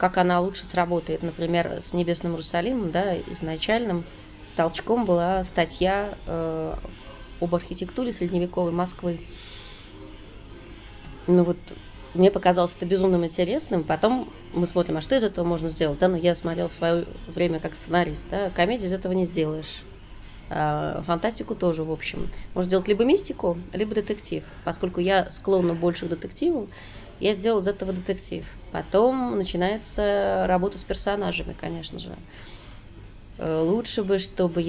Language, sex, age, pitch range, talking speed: Russian, female, 20-39, 160-185 Hz, 140 wpm